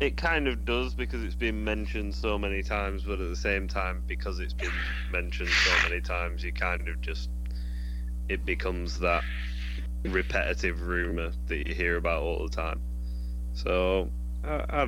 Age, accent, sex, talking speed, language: 10-29, British, male, 170 wpm, English